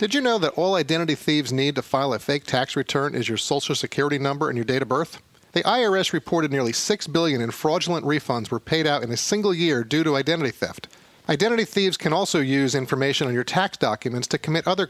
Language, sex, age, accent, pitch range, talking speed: English, male, 40-59, American, 135-180 Hz, 225 wpm